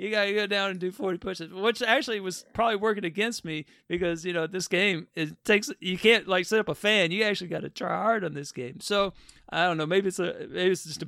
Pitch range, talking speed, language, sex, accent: 155-195 Hz, 275 wpm, English, male, American